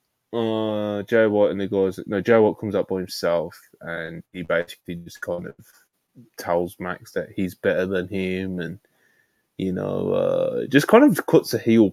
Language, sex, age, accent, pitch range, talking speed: English, male, 10-29, British, 95-110 Hz, 180 wpm